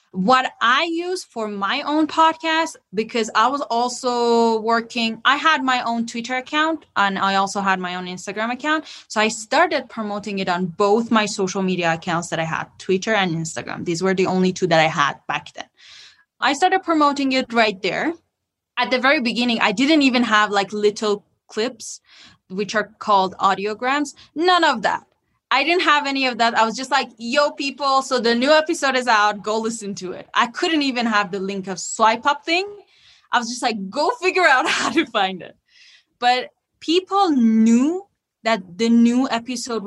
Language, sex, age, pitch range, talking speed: English, female, 20-39, 200-285 Hz, 190 wpm